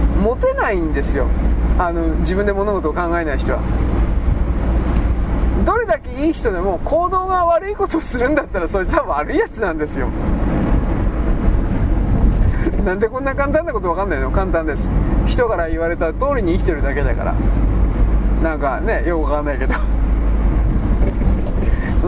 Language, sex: Japanese, male